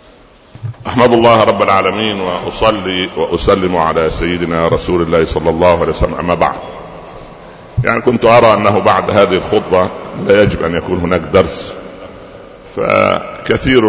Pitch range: 90-120 Hz